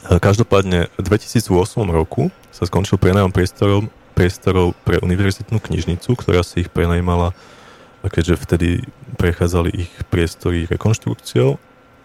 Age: 20-39